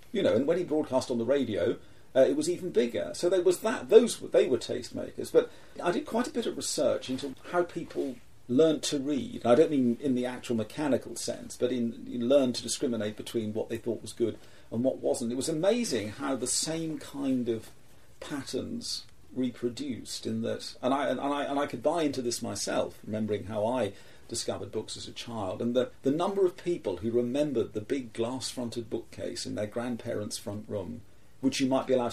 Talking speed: 210 wpm